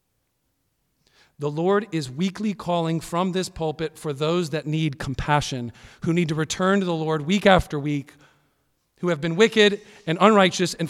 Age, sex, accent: 40-59, male, American